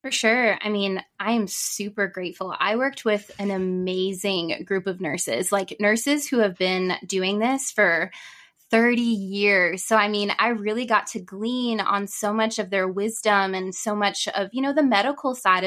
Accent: American